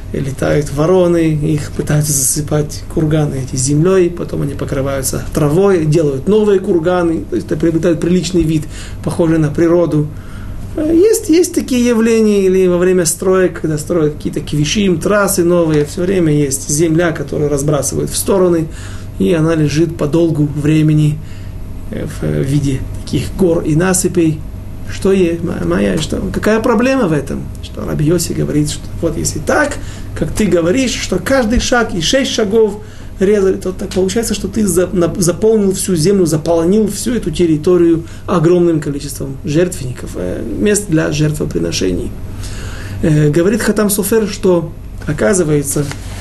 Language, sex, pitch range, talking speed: Russian, male, 145-190 Hz, 140 wpm